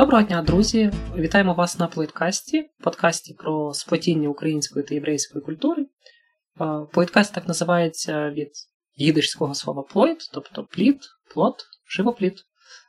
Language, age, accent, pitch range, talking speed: Ukrainian, 20-39, native, 150-195 Hz, 120 wpm